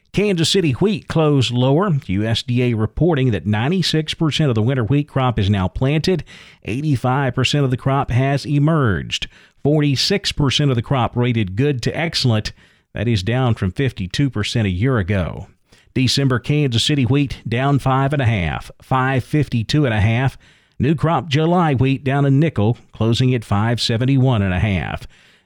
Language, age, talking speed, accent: English, 50-69, 130 wpm, American